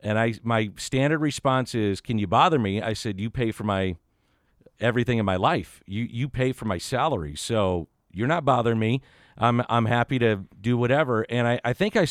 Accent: American